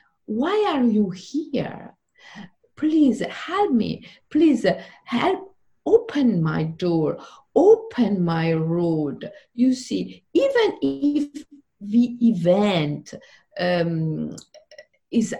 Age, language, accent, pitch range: 50-69, English, Italian, 185-295 Hz